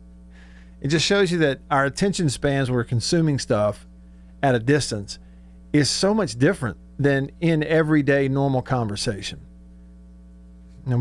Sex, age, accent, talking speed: male, 50-69, American, 135 wpm